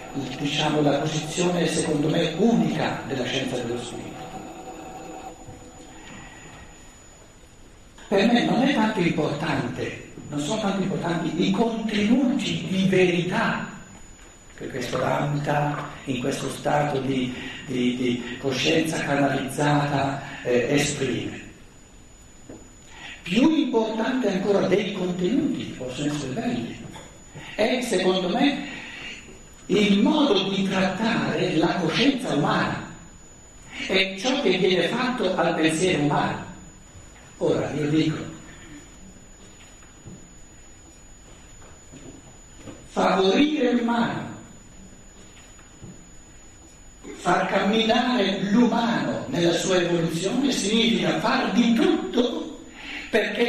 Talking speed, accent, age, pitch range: 90 wpm, native, 60-79, 145-230 Hz